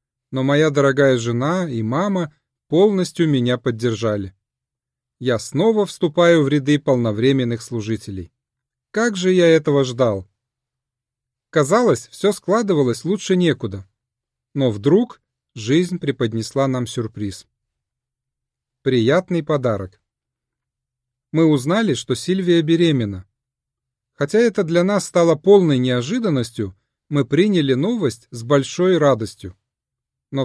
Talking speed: 105 wpm